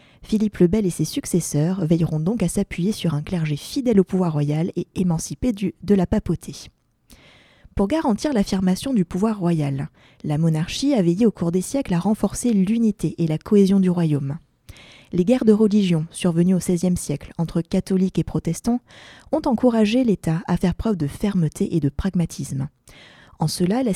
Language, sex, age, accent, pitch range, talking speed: French, female, 20-39, French, 165-210 Hz, 175 wpm